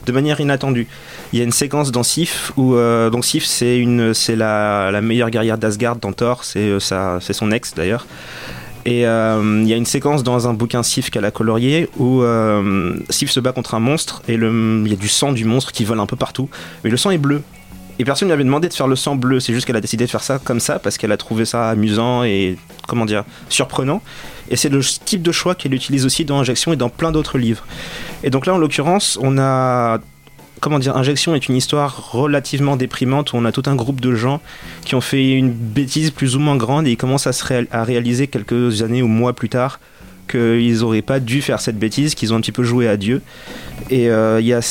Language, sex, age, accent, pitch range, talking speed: French, male, 20-39, French, 115-140 Hz, 240 wpm